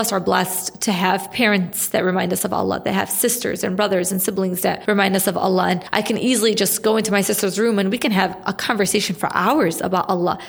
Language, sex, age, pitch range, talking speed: English, female, 20-39, 195-230 Hz, 245 wpm